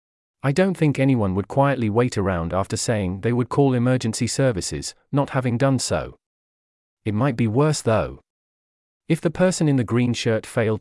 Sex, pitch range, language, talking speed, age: male, 105-140 Hz, English, 180 wpm, 40-59